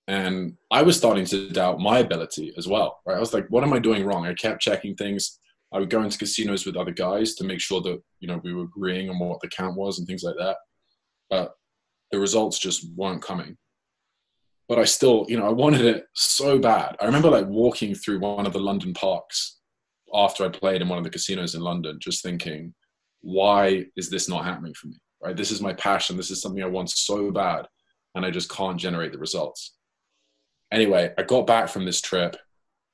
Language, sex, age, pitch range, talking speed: English, male, 20-39, 85-105 Hz, 220 wpm